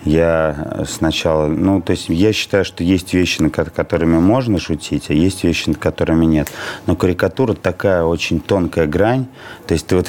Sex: male